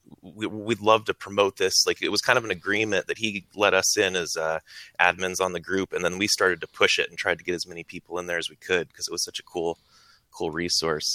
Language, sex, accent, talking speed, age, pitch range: English, male, American, 275 wpm, 30-49, 90-120 Hz